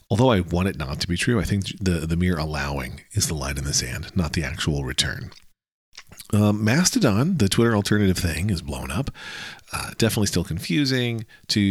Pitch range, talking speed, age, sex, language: 85-115 Hz, 195 wpm, 40-59, male, English